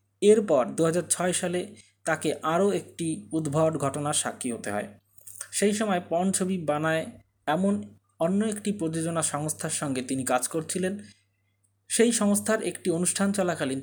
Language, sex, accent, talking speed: Bengali, male, native, 135 wpm